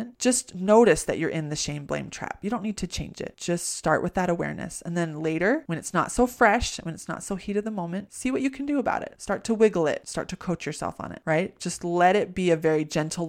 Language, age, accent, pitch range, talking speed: English, 30-49, American, 155-185 Hz, 275 wpm